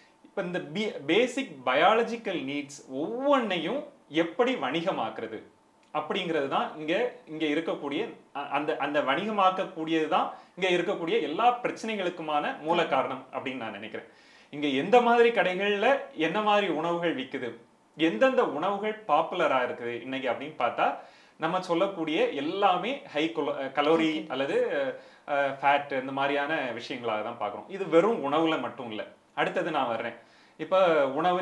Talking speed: 120 wpm